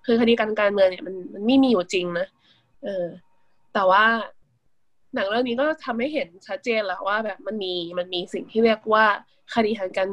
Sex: female